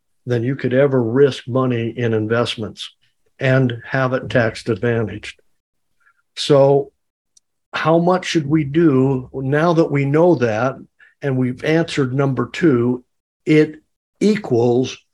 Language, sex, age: English, male, 60-79